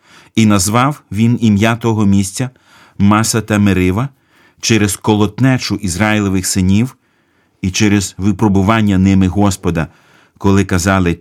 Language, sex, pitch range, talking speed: Ukrainian, male, 95-115 Hz, 100 wpm